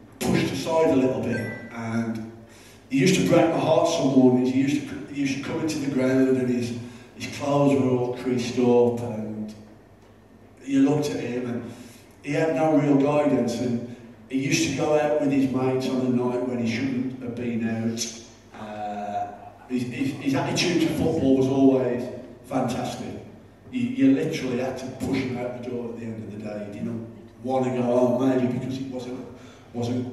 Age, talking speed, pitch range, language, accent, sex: 40-59, 195 wpm, 115-130 Hz, English, British, male